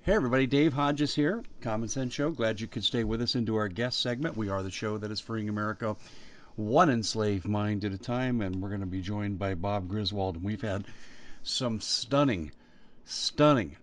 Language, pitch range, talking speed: English, 100-125 Hz, 205 wpm